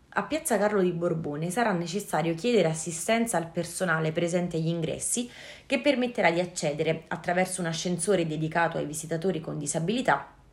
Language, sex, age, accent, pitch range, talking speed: Italian, female, 30-49, native, 160-205 Hz, 150 wpm